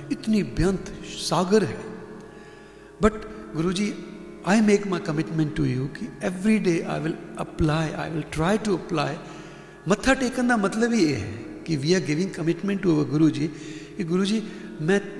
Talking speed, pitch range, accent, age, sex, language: 135 wpm, 150-185 Hz, Indian, 60-79, male, English